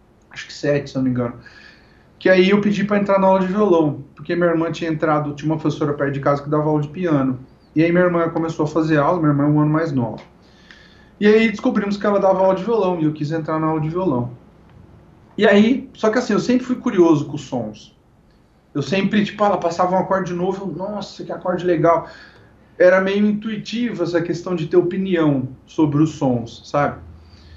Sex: male